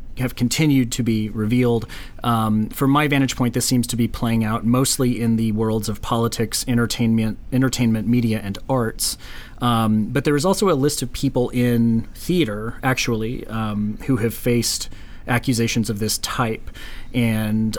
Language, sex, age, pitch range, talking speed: English, male, 30-49, 110-120 Hz, 160 wpm